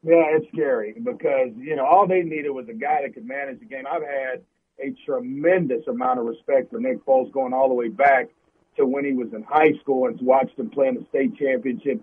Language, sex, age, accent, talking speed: English, male, 50-69, American, 235 wpm